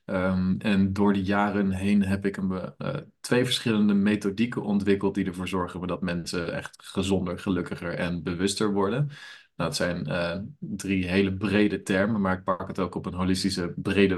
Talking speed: 165 wpm